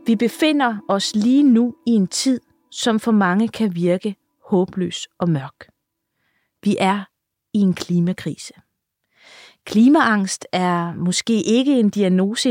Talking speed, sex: 130 wpm, female